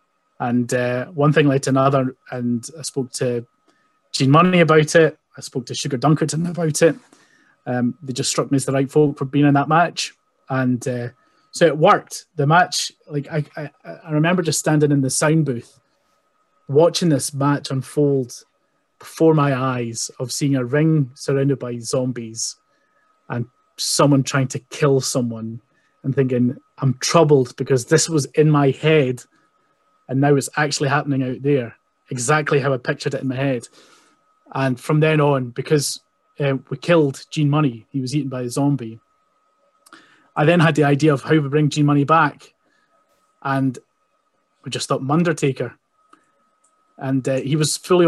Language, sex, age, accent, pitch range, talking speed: English, male, 20-39, British, 130-155 Hz, 170 wpm